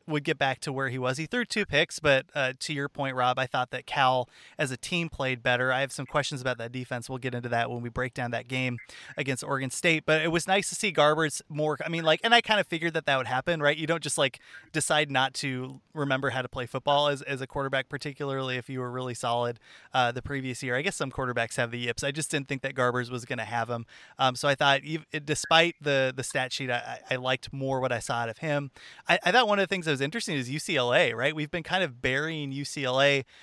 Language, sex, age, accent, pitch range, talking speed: English, male, 20-39, American, 130-160 Hz, 265 wpm